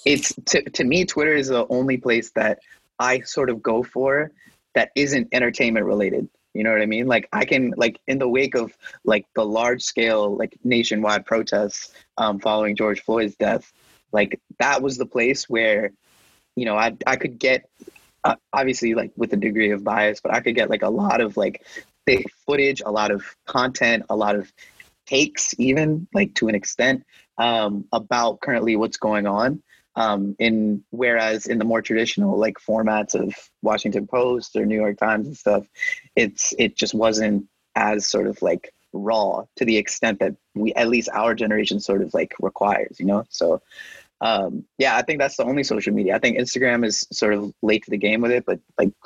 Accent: American